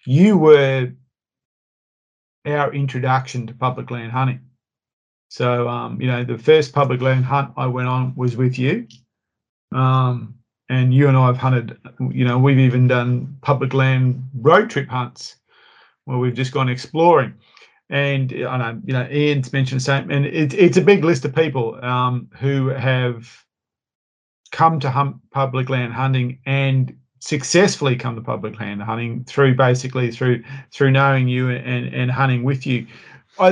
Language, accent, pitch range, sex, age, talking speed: English, Australian, 125-140 Hz, male, 40-59, 160 wpm